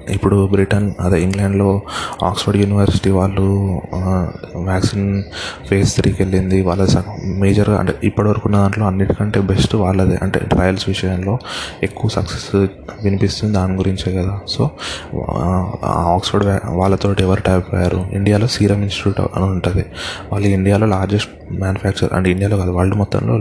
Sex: male